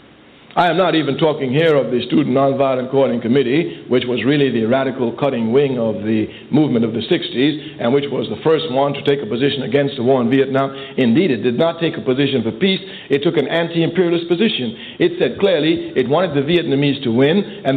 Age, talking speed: 60-79, 215 wpm